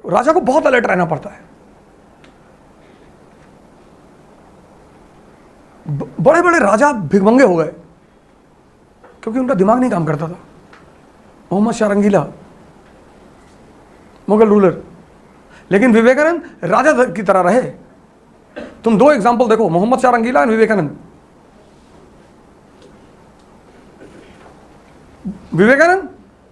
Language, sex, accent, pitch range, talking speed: Hindi, male, native, 185-260 Hz, 85 wpm